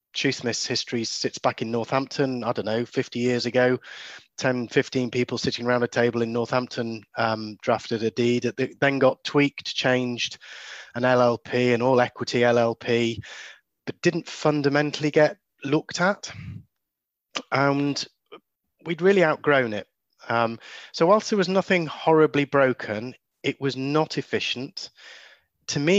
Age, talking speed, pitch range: 30-49, 140 wpm, 120-145 Hz